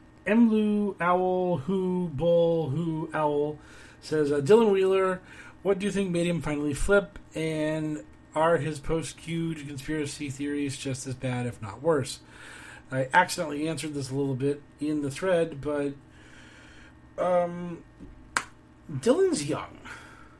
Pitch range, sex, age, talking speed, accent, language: 120-155 Hz, male, 40-59, 130 wpm, American, English